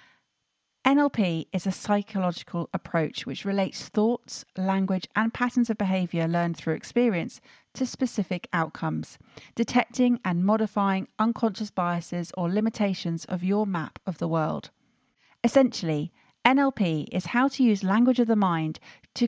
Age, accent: 40-59, British